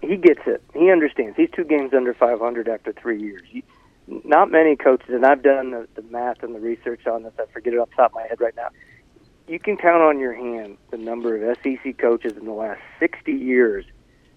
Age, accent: 40-59, American